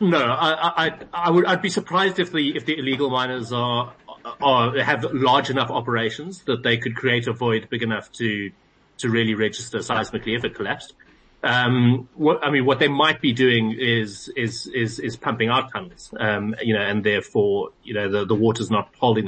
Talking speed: 200 wpm